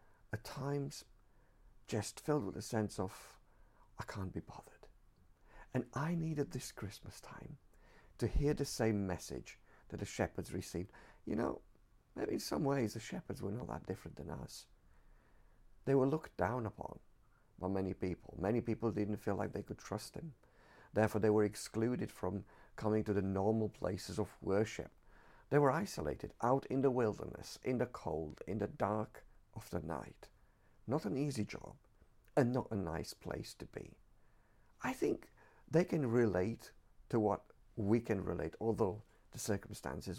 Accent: British